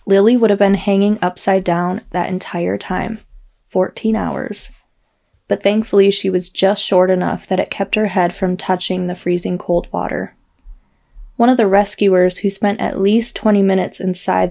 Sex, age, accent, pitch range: female, 20-39, American, 180-200 Hz